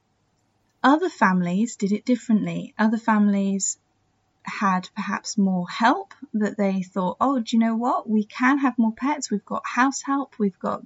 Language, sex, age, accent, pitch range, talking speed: English, female, 10-29, British, 200-240 Hz, 165 wpm